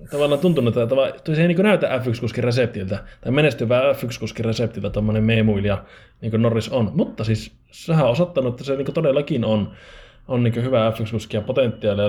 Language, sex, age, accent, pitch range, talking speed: Finnish, male, 20-39, native, 110-130 Hz, 170 wpm